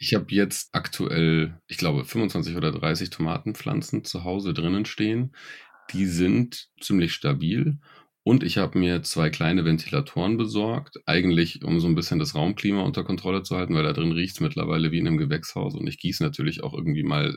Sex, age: male, 30-49